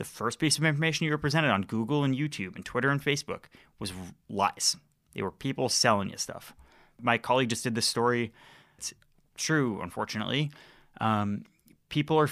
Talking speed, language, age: 175 wpm, English, 30-49